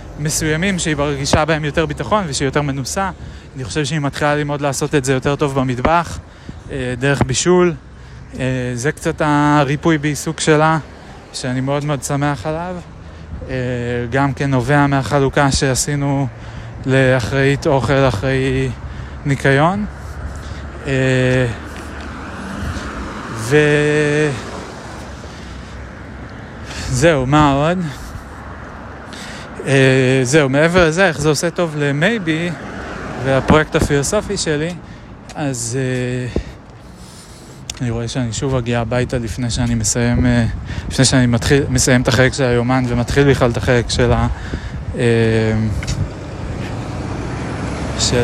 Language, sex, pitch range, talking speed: Hebrew, male, 120-150 Hz, 100 wpm